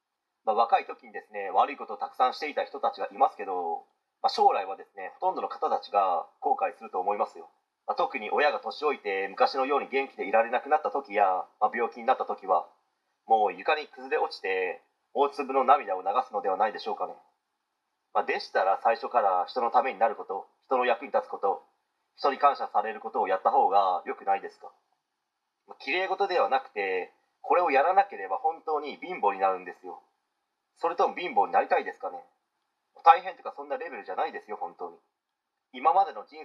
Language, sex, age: Japanese, male, 30-49